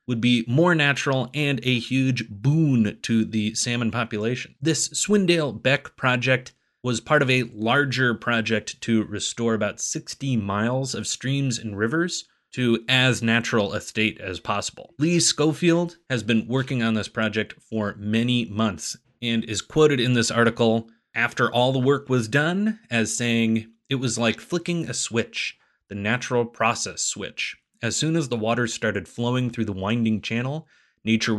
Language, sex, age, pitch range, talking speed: English, male, 30-49, 110-135 Hz, 165 wpm